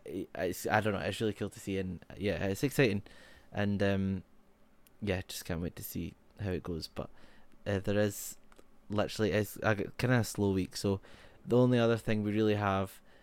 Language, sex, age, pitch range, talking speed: English, male, 20-39, 100-110 Hz, 195 wpm